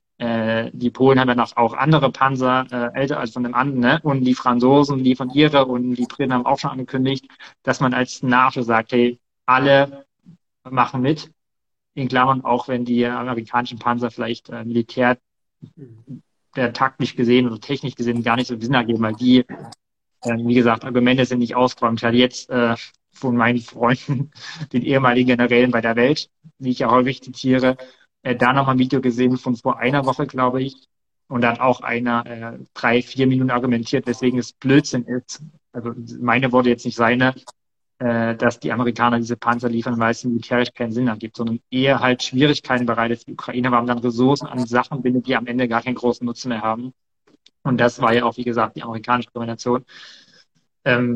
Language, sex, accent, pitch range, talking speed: German, male, German, 120-130 Hz, 190 wpm